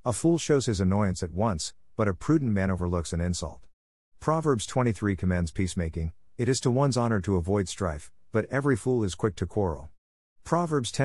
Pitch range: 90-120 Hz